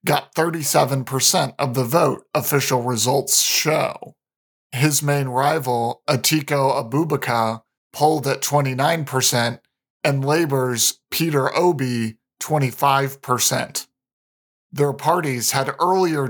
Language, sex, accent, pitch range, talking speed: English, male, American, 130-155 Hz, 90 wpm